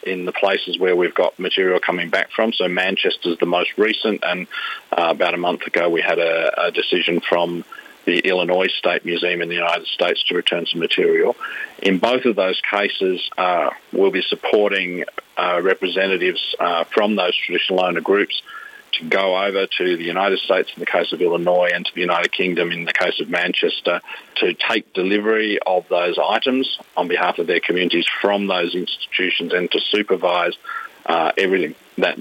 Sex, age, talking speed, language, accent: male, 50-69, 185 wpm, English, Australian